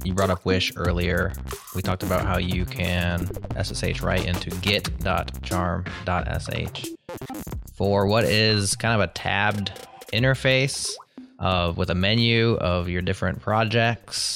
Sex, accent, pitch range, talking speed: male, American, 95-120 Hz, 130 wpm